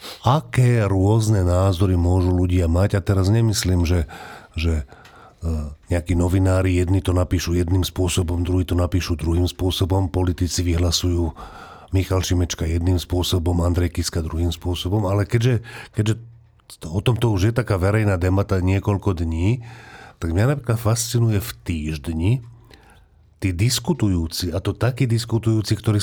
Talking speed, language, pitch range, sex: 135 wpm, Slovak, 90-120 Hz, male